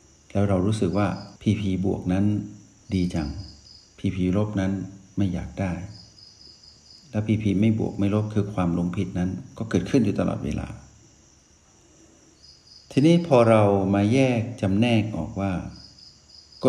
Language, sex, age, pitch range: Thai, male, 60-79, 95-115 Hz